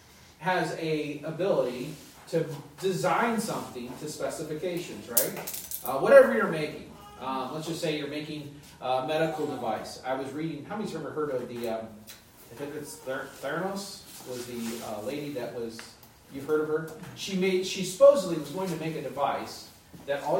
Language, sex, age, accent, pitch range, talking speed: English, male, 30-49, American, 120-180 Hz, 180 wpm